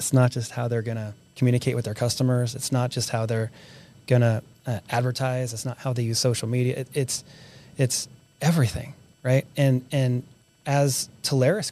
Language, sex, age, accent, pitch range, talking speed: English, male, 30-49, American, 125-160 Hz, 175 wpm